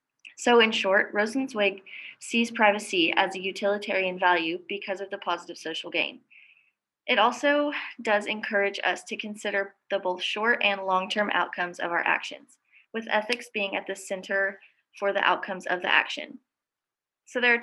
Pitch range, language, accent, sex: 190-230 Hz, English, American, female